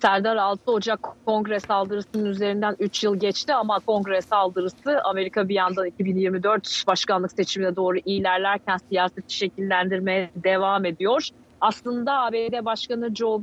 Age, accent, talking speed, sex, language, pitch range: 40-59, native, 125 wpm, female, Turkish, 190-220 Hz